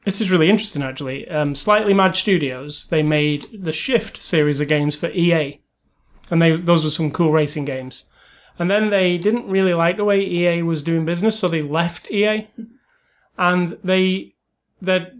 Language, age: English, 30-49